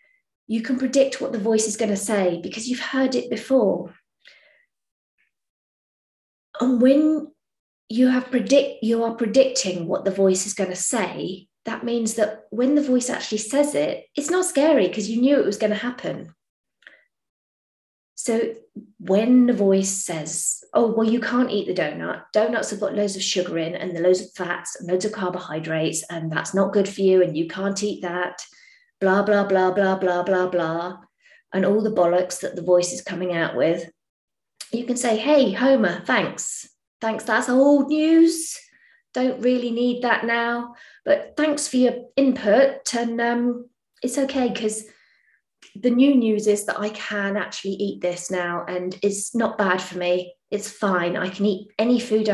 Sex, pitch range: female, 185-250 Hz